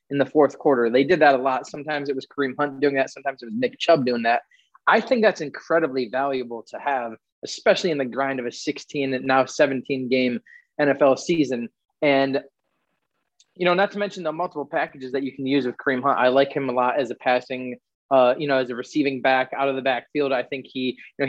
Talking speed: 235 wpm